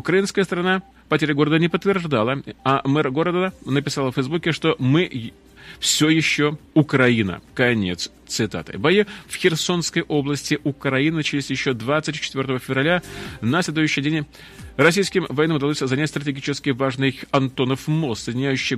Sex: male